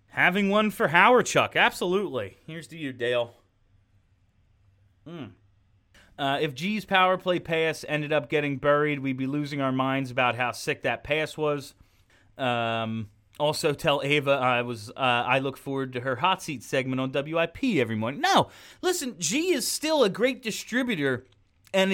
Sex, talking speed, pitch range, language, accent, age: male, 165 wpm, 120-175 Hz, English, American, 30-49